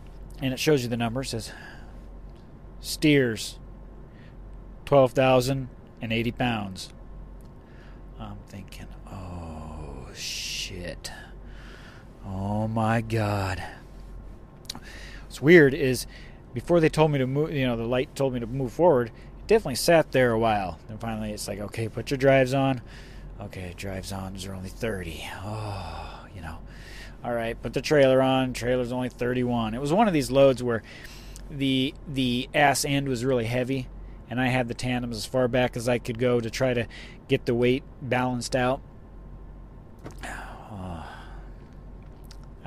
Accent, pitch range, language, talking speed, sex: American, 110-135 Hz, English, 145 wpm, male